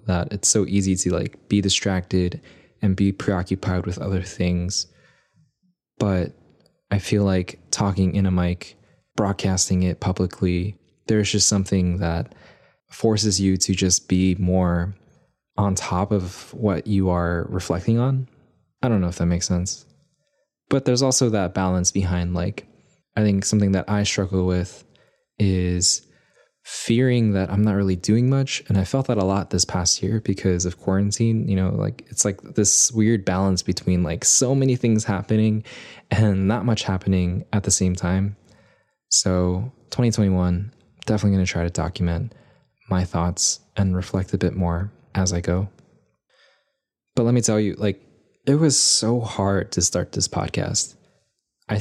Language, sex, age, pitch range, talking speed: English, male, 20-39, 90-110 Hz, 160 wpm